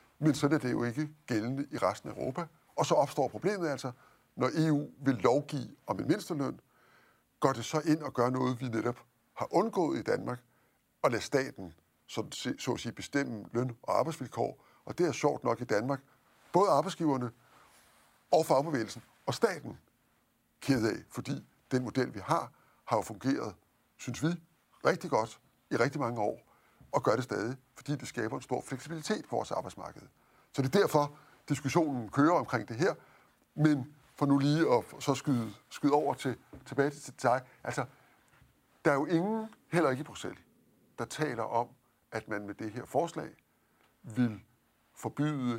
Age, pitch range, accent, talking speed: 60-79, 120-150 Hz, native, 170 wpm